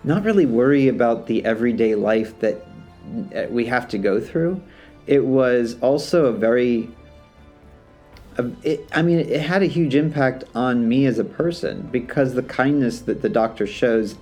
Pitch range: 110-135 Hz